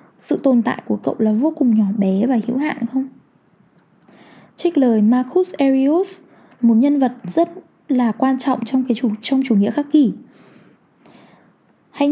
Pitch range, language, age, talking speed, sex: 210-275 Hz, Vietnamese, 10-29, 170 wpm, female